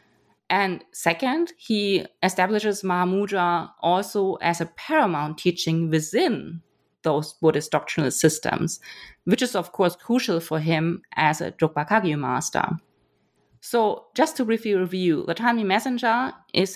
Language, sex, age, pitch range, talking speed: English, female, 30-49, 165-205 Hz, 125 wpm